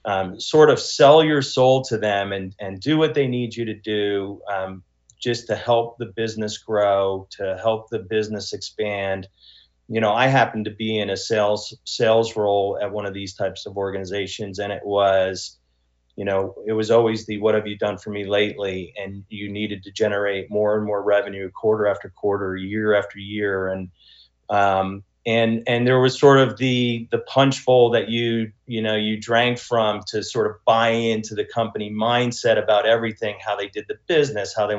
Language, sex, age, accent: English, male, 30-49, American